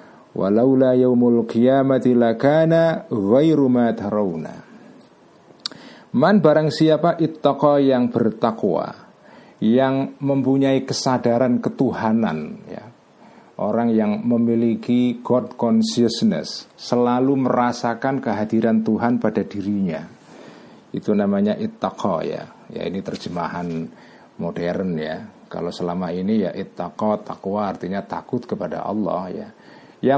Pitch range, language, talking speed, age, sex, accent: 105-135 Hz, Indonesian, 95 wpm, 50-69, male, native